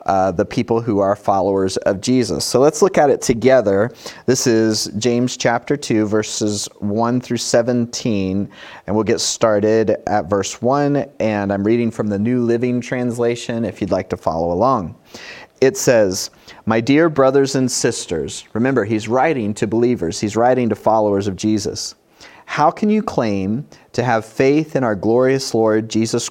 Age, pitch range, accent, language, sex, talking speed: 30-49, 105-135 Hz, American, English, male, 170 wpm